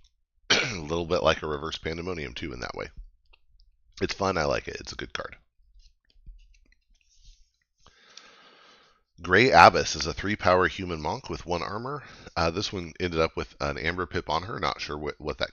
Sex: male